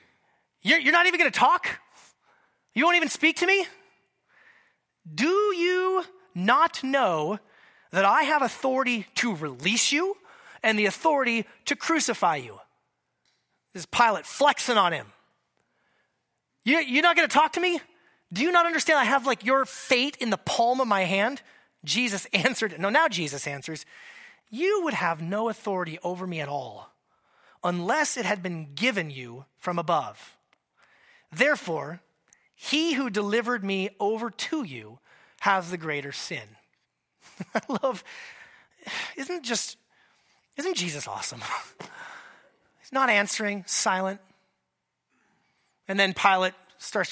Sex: male